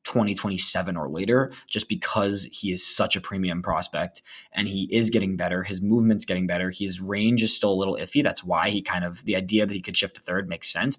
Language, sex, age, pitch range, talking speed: English, male, 20-39, 95-125 Hz, 235 wpm